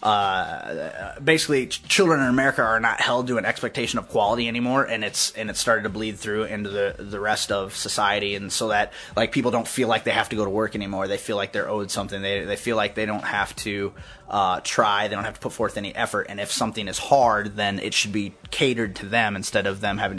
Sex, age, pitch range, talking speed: male, 20-39, 105-130 Hz, 250 wpm